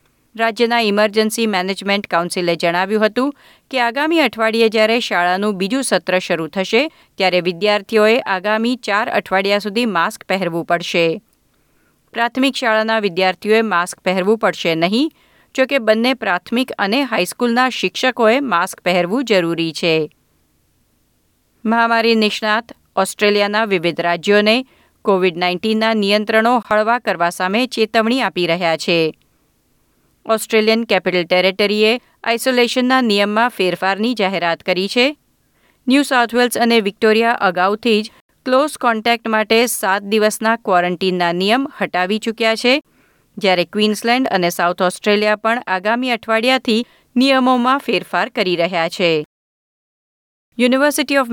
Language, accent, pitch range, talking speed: Gujarati, native, 185-235 Hz, 110 wpm